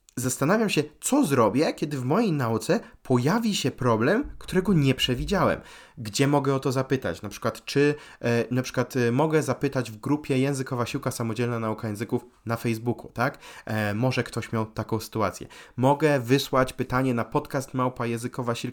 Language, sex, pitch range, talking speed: Polish, male, 115-145 Hz, 160 wpm